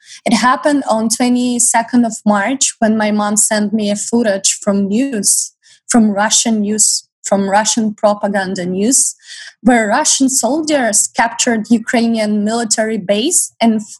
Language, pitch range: English, 210-240 Hz